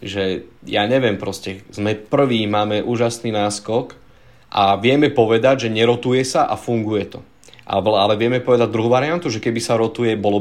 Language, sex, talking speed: Slovak, male, 160 wpm